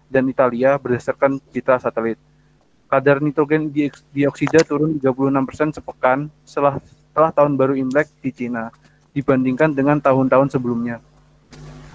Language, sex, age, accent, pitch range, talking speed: Indonesian, male, 20-39, native, 135-150 Hz, 110 wpm